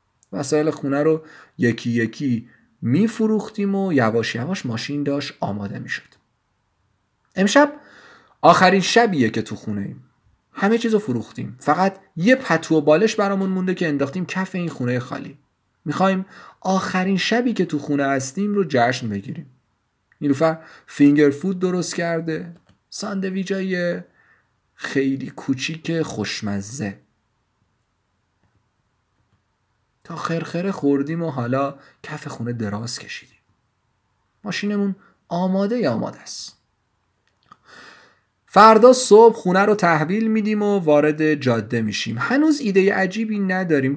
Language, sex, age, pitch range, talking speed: Persian, male, 40-59, 120-195 Hz, 110 wpm